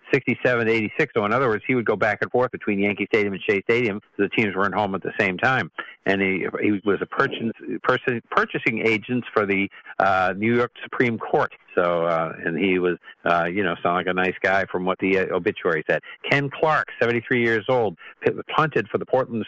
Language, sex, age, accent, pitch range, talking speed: English, male, 50-69, American, 95-110 Hz, 220 wpm